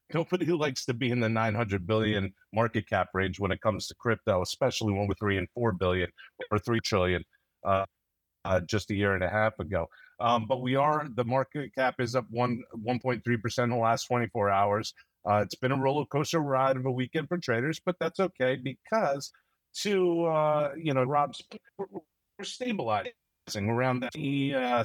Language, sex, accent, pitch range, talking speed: English, male, American, 105-135 Hz, 190 wpm